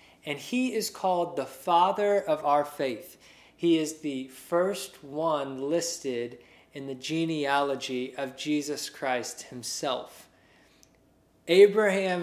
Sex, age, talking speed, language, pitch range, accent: male, 20-39, 115 wpm, English, 130-165 Hz, American